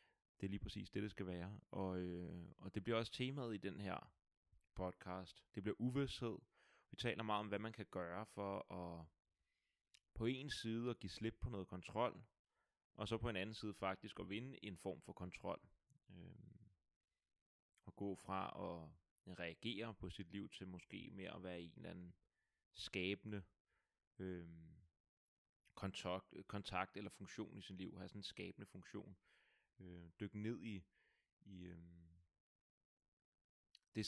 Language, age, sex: Danish, 30-49, male